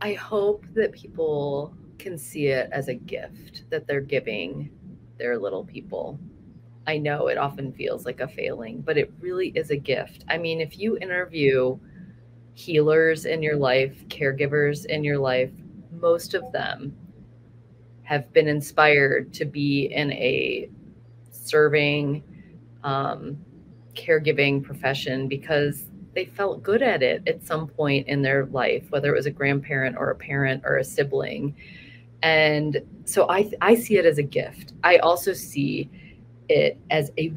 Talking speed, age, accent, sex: 155 wpm, 30-49, American, female